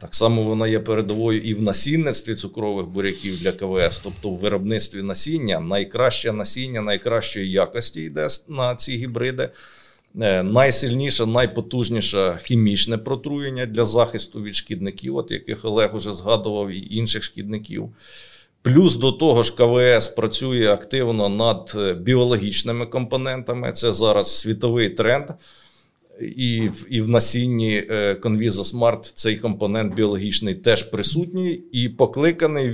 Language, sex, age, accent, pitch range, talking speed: Ukrainian, male, 50-69, native, 105-130 Hz, 125 wpm